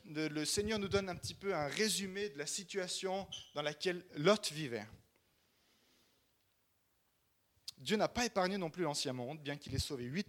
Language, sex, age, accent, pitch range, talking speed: French, male, 30-49, French, 130-190 Hz, 170 wpm